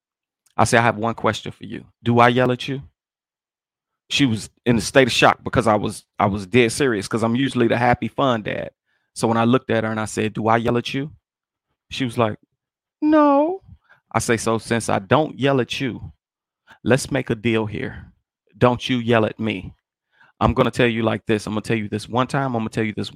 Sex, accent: male, American